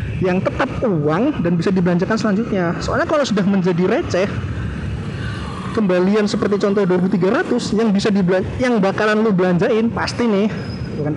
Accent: native